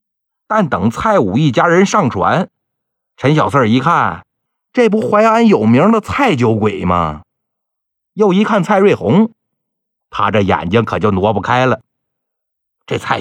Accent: native